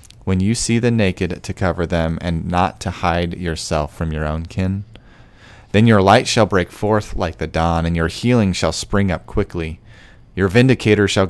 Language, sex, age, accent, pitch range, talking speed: English, male, 30-49, American, 85-110 Hz, 190 wpm